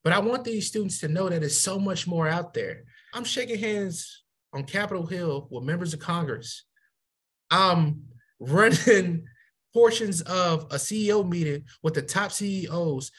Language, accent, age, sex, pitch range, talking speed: English, American, 20-39, male, 155-225 Hz, 160 wpm